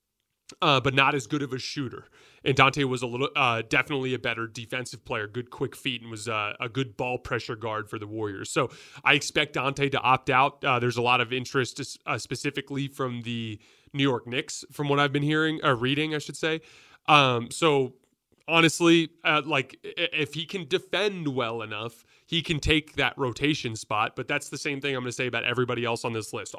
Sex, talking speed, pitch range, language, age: male, 220 wpm, 120-145 Hz, English, 30-49